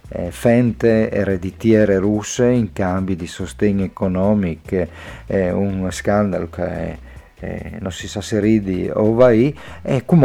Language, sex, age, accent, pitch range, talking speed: Italian, male, 50-69, native, 90-115 Hz, 140 wpm